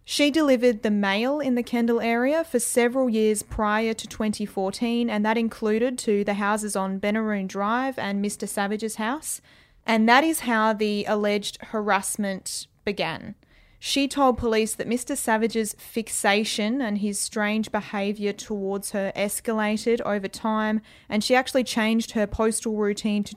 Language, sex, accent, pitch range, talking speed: English, female, Australian, 205-235 Hz, 150 wpm